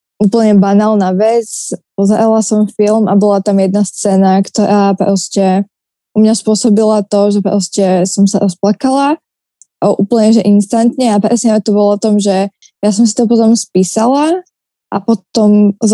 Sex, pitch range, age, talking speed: female, 200-220 Hz, 20-39, 150 wpm